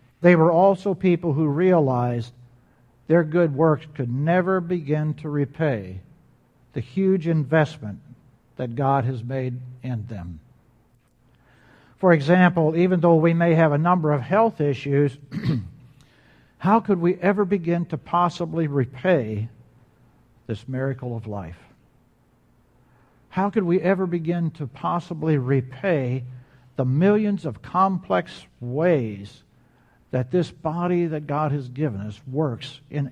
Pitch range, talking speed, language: 130-185 Hz, 125 wpm, English